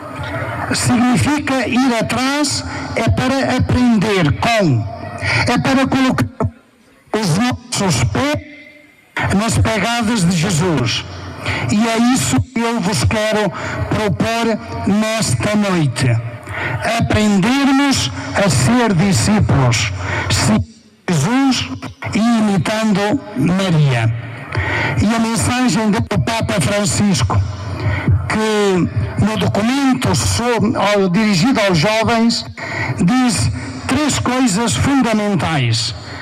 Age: 60-79